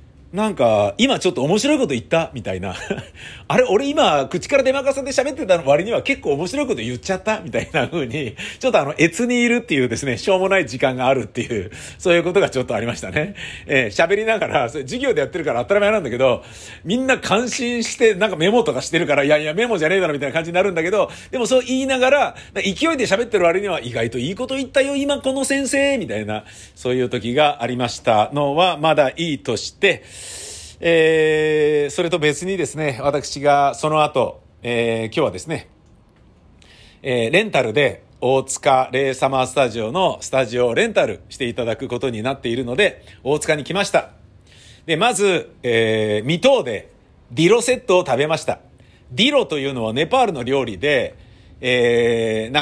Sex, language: male, Japanese